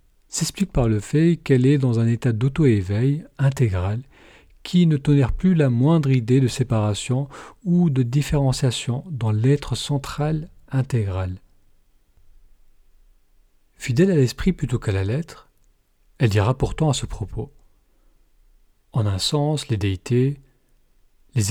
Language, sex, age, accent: French, male, 40-59, French